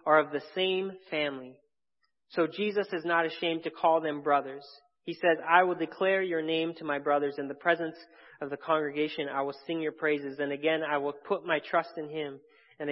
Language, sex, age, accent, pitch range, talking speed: English, male, 30-49, American, 150-190 Hz, 210 wpm